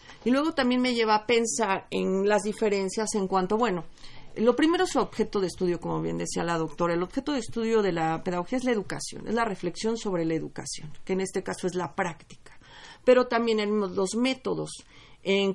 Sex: female